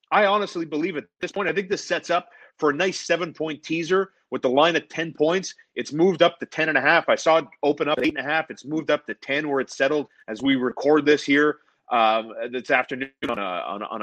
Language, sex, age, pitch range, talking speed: English, male, 30-49, 150-175 Hz, 235 wpm